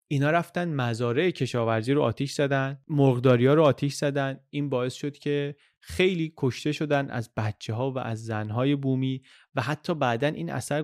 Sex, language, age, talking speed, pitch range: male, Persian, 30-49, 170 wpm, 120-150 Hz